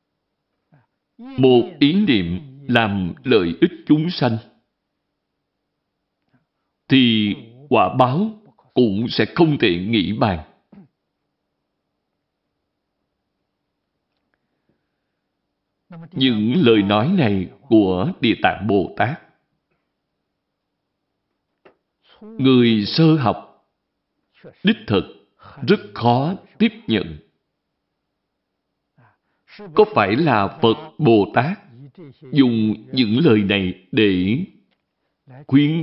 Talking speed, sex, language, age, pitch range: 80 wpm, male, Vietnamese, 60-79, 105-170 Hz